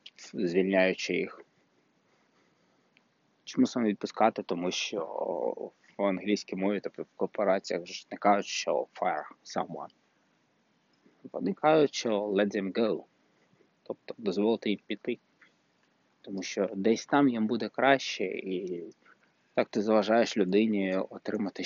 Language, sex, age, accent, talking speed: Ukrainian, male, 20-39, native, 115 wpm